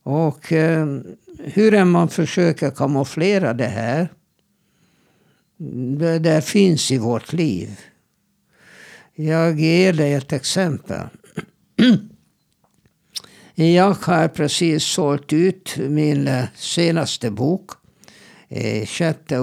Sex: male